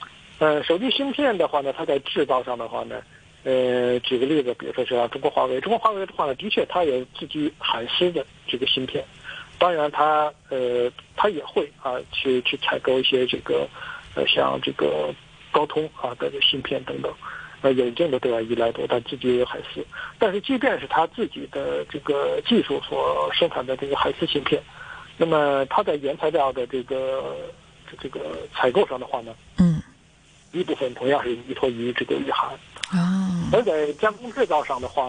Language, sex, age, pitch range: Chinese, male, 50-69, 125-205 Hz